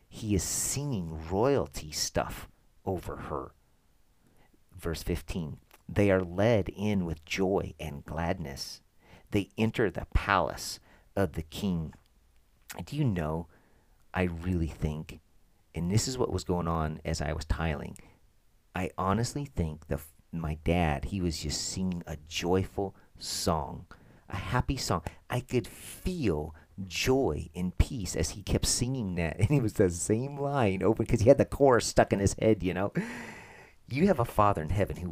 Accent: American